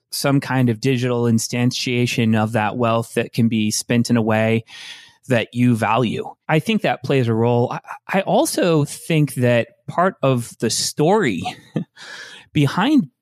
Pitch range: 120-150 Hz